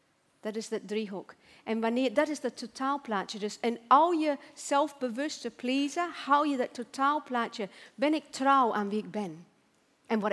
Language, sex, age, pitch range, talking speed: Dutch, female, 40-59, 215-270 Hz, 170 wpm